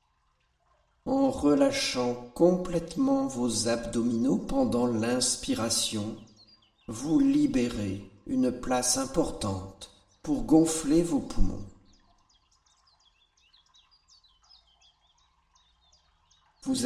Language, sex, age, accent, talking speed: French, male, 50-69, French, 60 wpm